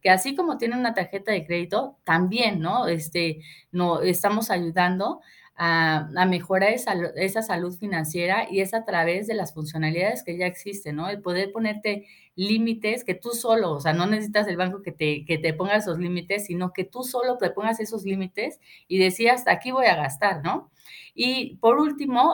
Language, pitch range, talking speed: Spanish, 175-215 Hz, 175 wpm